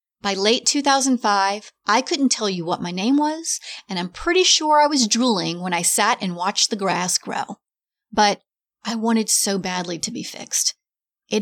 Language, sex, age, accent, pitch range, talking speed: English, female, 30-49, American, 195-255 Hz, 185 wpm